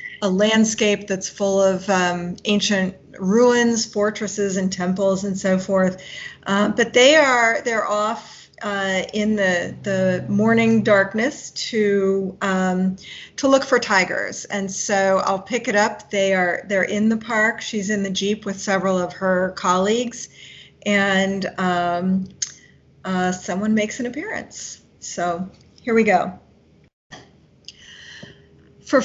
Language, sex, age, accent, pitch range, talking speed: English, female, 40-59, American, 185-215 Hz, 135 wpm